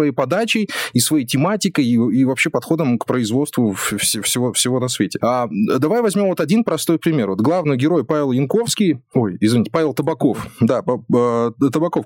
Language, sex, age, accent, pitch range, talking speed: Russian, male, 20-39, native, 140-200 Hz, 170 wpm